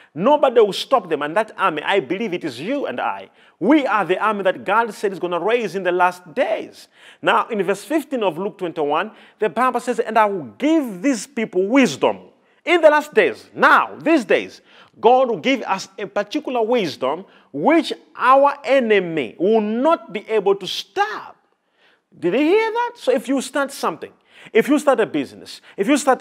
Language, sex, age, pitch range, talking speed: English, male, 40-59, 200-280 Hz, 195 wpm